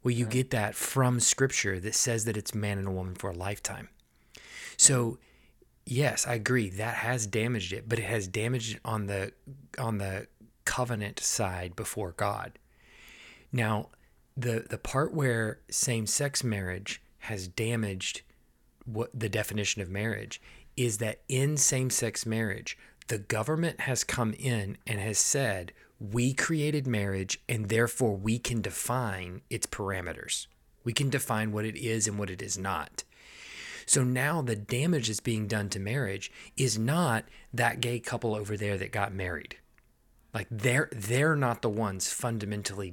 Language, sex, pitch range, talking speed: English, male, 105-125 Hz, 155 wpm